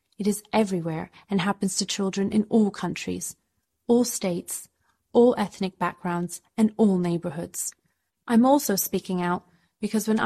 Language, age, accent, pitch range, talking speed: English, 30-49, British, 180-225 Hz, 140 wpm